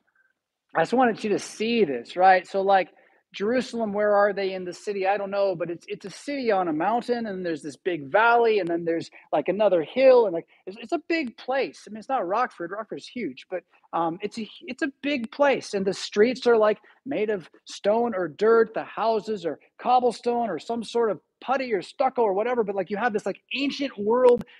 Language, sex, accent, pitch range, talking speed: English, male, American, 190-255 Hz, 225 wpm